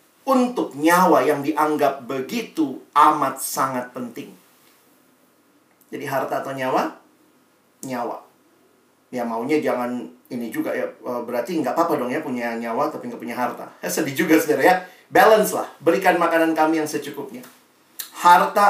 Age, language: 40-59, Indonesian